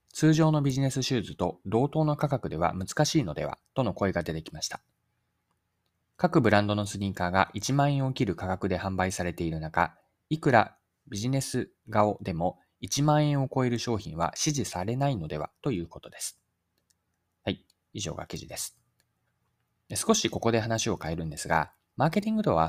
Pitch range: 85-135 Hz